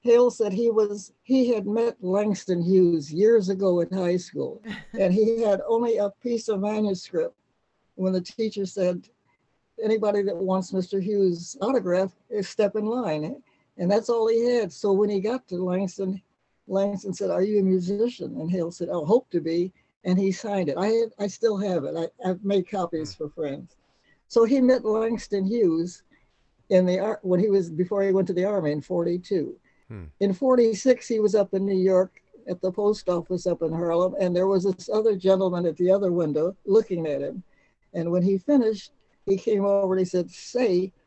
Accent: American